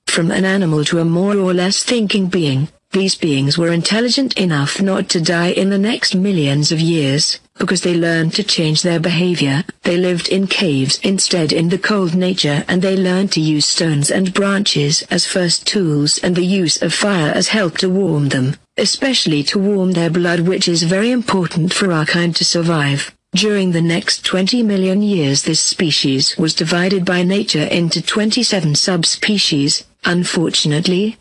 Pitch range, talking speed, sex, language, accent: 160-195 Hz, 175 wpm, female, English, British